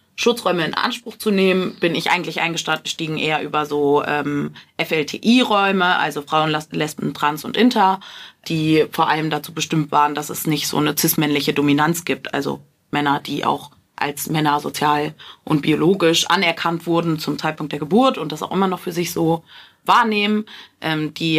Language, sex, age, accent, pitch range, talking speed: German, female, 30-49, German, 155-180 Hz, 170 wpm